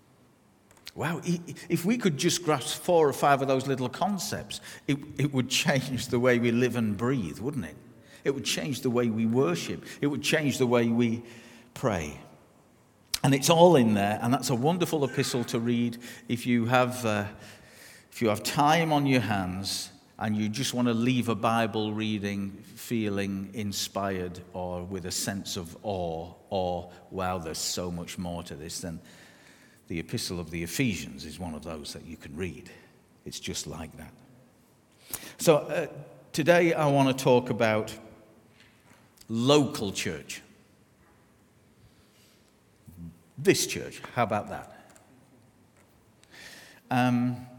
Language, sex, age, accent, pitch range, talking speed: English, male, 50-69, British, 100-140 Hz, 155 wpm